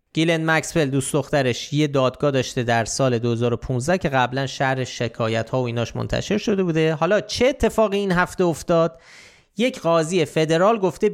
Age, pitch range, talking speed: 30-49, 130-175 Hz, 160 wpm